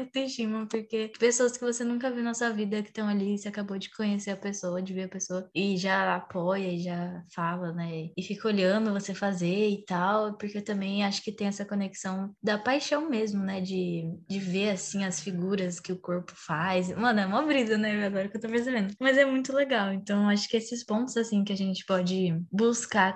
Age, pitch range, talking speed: 10-29, 190-225 Hz, 210 wpm